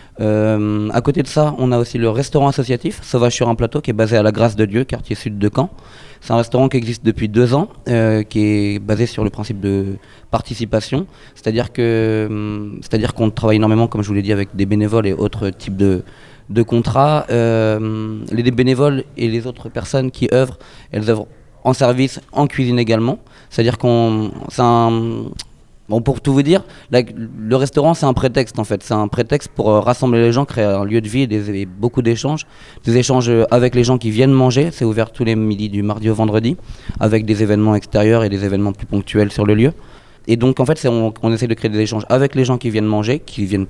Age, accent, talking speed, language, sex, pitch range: 30-49, French, 225 wpm, French, male, 105-125 Hz